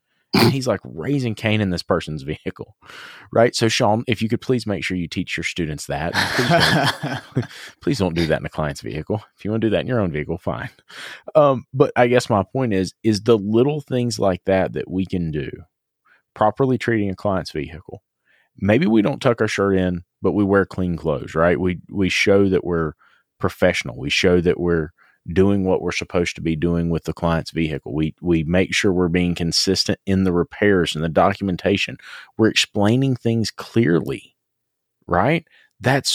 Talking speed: 200 wpm